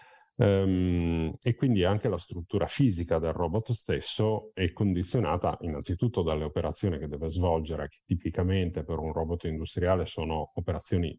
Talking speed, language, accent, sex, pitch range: 135 wpm, Italian, native, male, 80-105 Hz